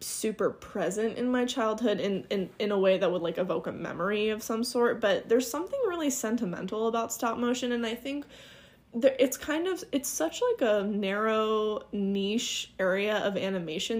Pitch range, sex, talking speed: 190-235 Hz, female, 185 wpm